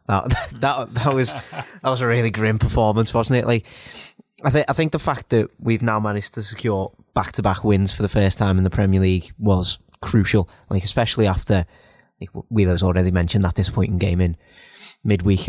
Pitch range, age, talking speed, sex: 95-115 Hz, 20-39, 195 wpm, male